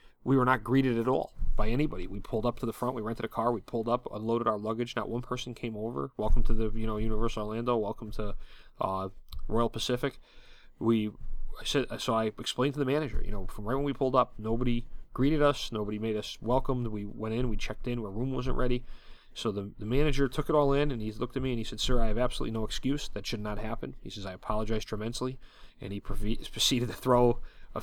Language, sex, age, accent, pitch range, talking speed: English, male, 30-49, American, 105-125 Hz, 240 wpm